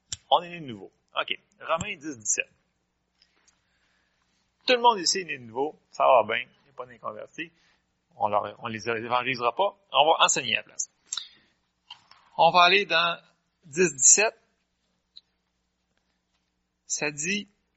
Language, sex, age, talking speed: French, male, 40-59, 140 wpm